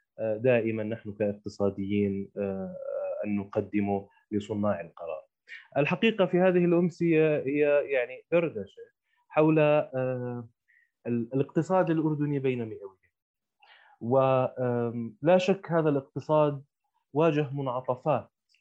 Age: 20-39